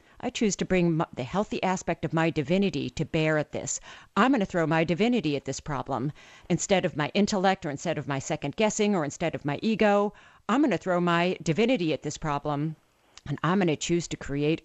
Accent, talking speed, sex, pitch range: American, 220 wpm, female, 150-215 Hz